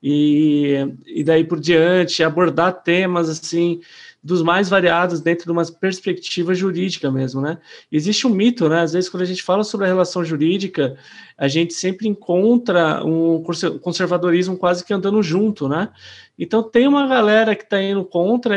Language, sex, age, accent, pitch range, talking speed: Portuguese, male, 20-39, Brazilian, 155-185 Hz, 165 wpm